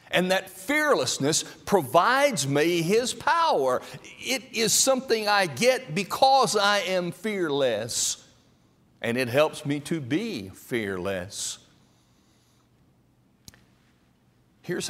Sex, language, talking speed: male, English, 95 wpm